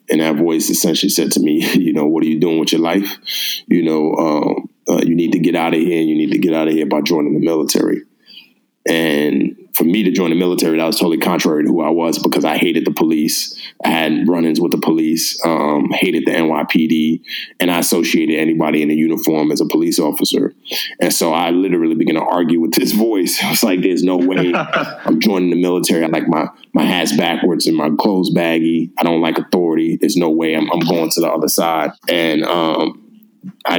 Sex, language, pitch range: male, English, 80-100 Hz